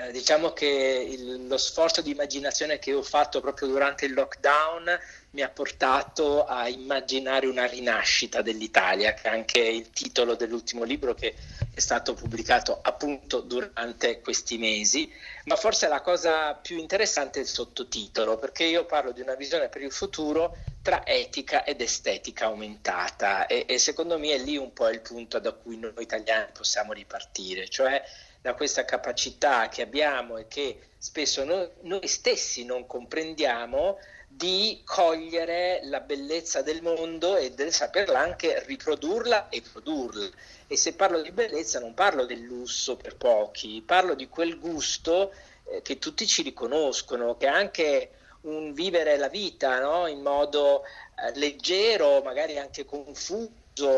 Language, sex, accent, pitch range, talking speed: Italian, male, native, 130-180 Hz, 150 wpm